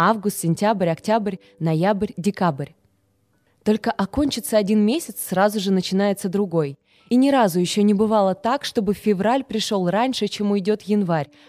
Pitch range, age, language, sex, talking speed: 170-225 Hz, 20-39, Russian, female, 140 wpm